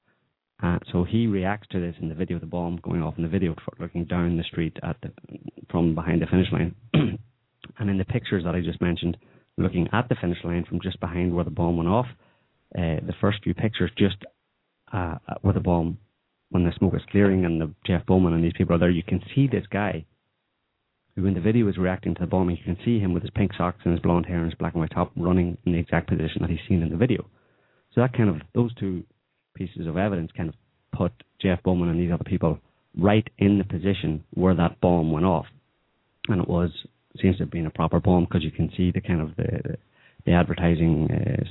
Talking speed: 235 wpm